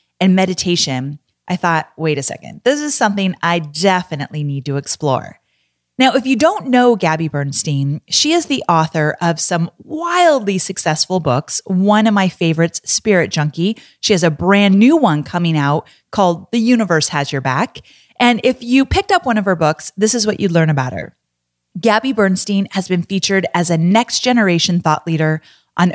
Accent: American